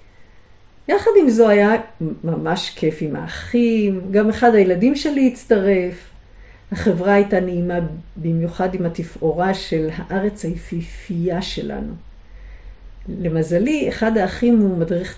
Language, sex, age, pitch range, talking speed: Hebrew, female, 50-69, 165-230 Hz, 110 wpm